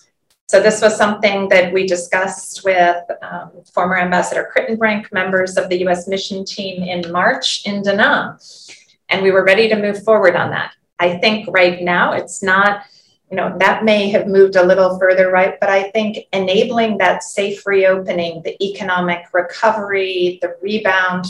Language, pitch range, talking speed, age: Vietnamese, 180-210 Hz, 165 wpm, 30-49